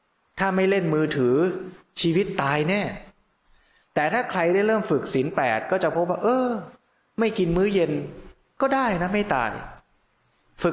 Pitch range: 150-195 Hz